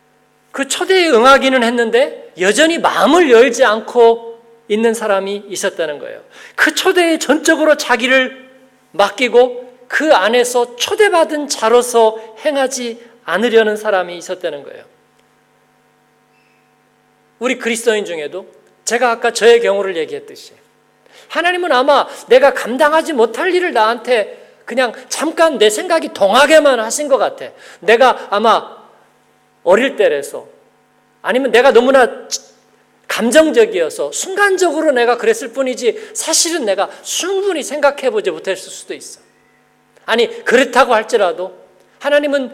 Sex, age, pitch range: male, 40-59, 230-345 Hz